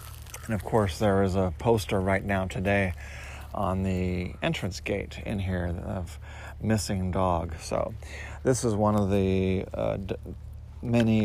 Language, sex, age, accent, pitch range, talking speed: English, male, 40-59, American, 95-110 Hz, 145 wpm